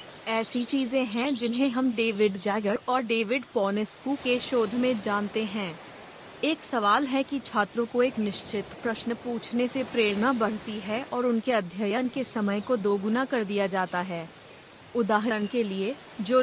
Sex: female